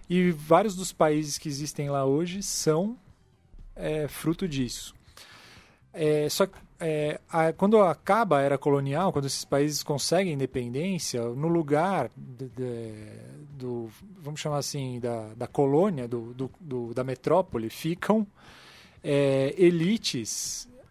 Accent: Brazilian